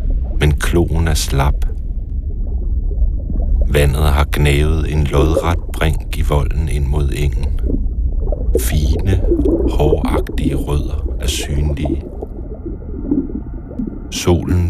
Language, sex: Danish, male